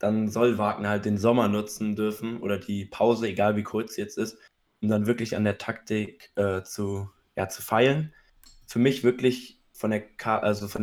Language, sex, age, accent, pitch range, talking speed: German, male, 20-39, German, 100-115 Hz, 200 wpm